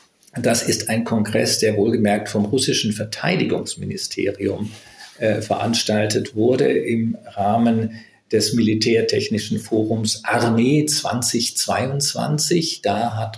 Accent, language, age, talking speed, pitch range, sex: German, German, 50-69, 95 wpm, 105-140 Hz, male